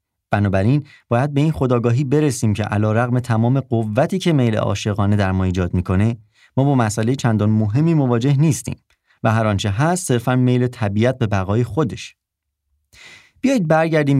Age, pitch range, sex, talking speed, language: 30-49, 100-130 Hz, male, 155 wpm, Persian